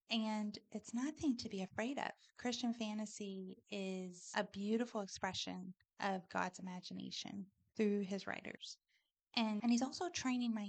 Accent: American